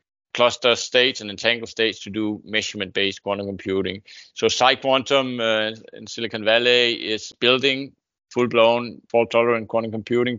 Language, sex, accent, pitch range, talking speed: English, male, Danish, 100-120 Hz, 125 wpm